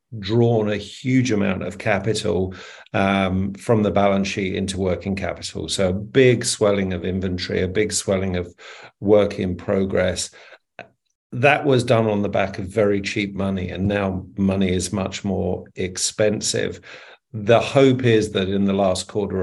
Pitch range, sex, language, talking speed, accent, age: 95-110 Hz, male, English, 160 wpm, British, 50-69